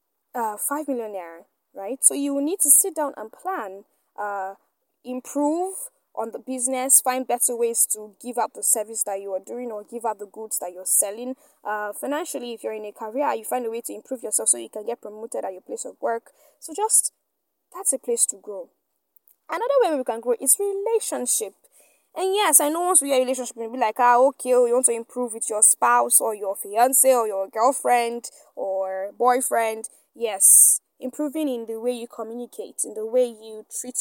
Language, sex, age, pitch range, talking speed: English, female, 10-29, 215-280 Hz, 205 wpm